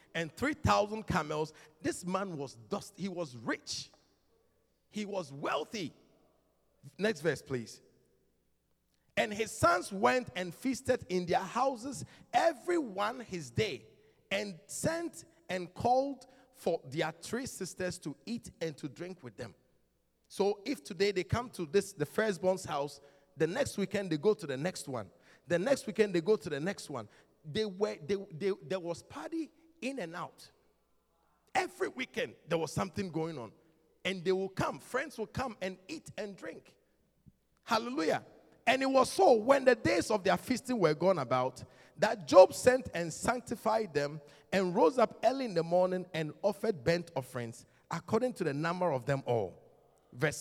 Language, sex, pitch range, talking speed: English, male, 150-225 Hz, 165 wpm